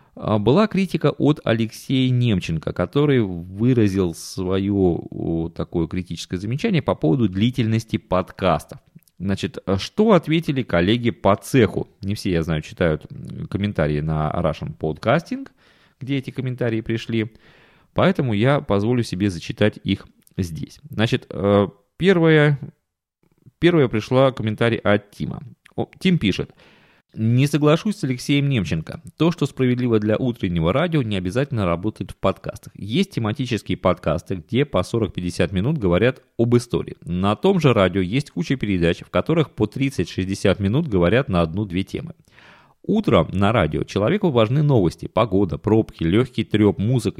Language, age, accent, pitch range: Russian, 30-49, native, 95-135 Hz